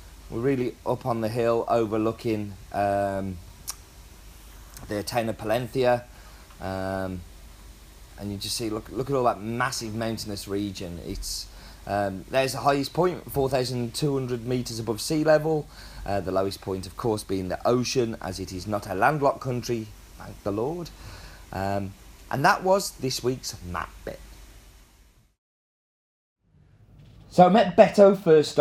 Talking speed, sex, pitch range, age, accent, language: 145 wpm, male, 105-140 Hz, 30-49, British, English